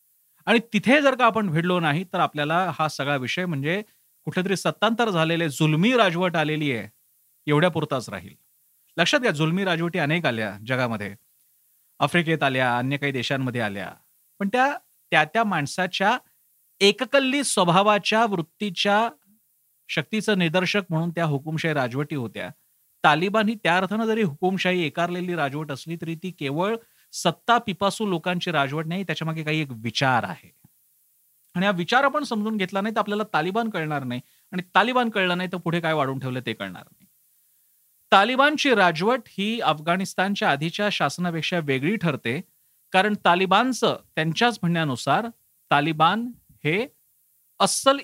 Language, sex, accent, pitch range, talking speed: Marathi, male, native, 145-200 Hz, 95 wpm